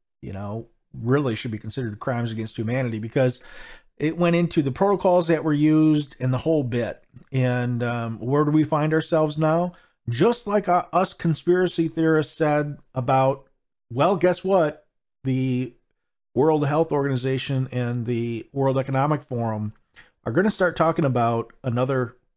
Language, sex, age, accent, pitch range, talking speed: English, male, 40-59, American, 115-145 Hz, 155 wpm